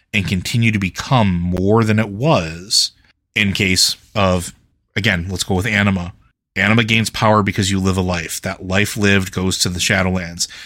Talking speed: 175 wpm